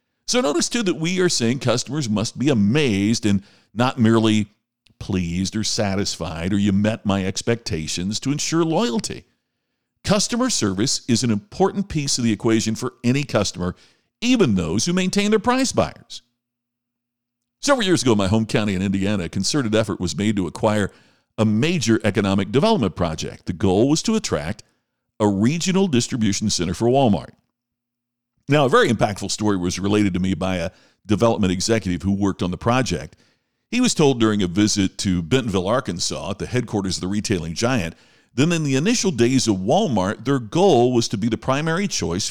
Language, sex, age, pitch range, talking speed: English, male, 50-69, 100-145 Hz, 175 wpm